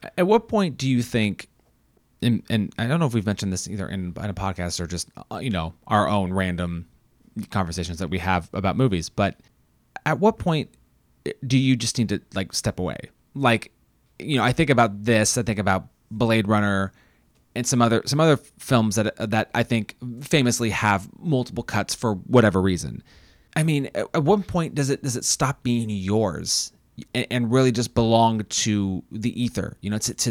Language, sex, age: English, male, 30-49